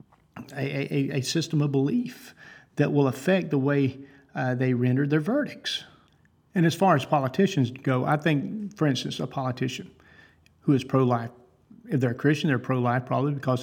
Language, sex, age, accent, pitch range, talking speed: English, male, 50-69, American, 125-150 Hz, 170 wpm